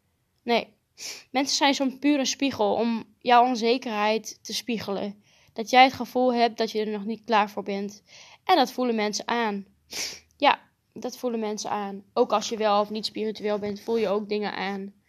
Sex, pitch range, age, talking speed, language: female, 215-250 Hz, 10-29, 185 wpm, Dutch